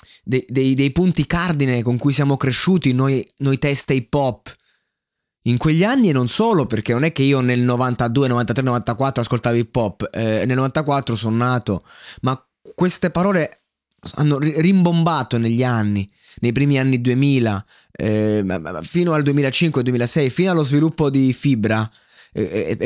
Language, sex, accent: Italian, male, native